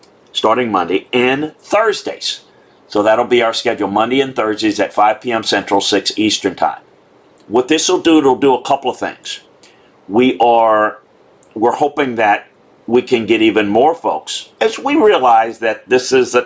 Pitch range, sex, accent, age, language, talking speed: 100-130 Hz, male, American, 50-69, English, 170 wpm